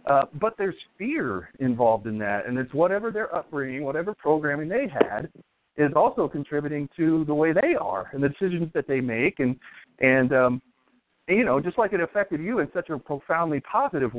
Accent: American